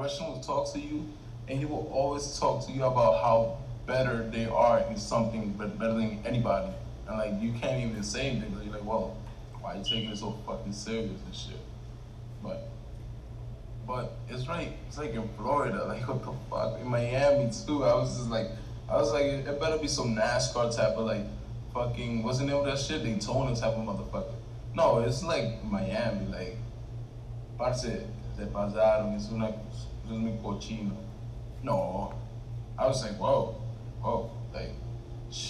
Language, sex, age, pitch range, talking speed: English, male, 20-39, 110-125 Hz, 165 wpm